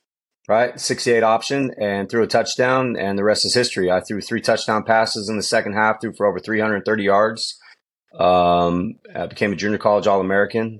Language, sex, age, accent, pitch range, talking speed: English, male, 30-49, American, 95-120 Hz, 185 wpm